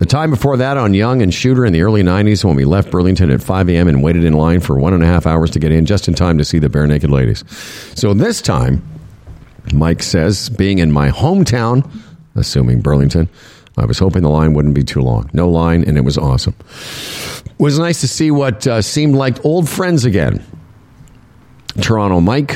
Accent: American